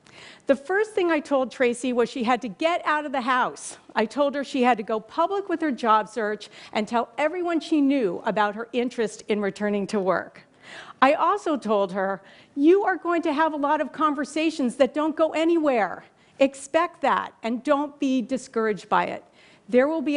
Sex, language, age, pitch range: female, Chinese, 50-69, 210-285 Hz